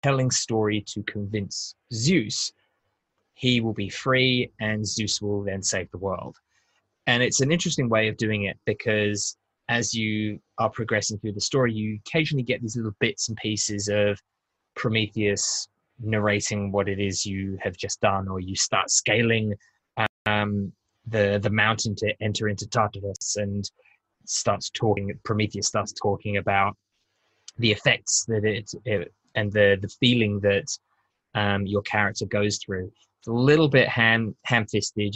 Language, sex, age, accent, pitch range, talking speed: English, male, 20-39, British, 100-125 Hz, 155 wpm